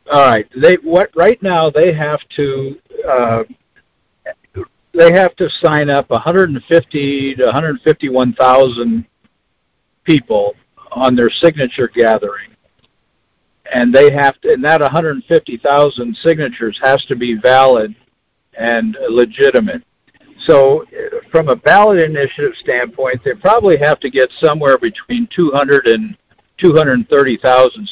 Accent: American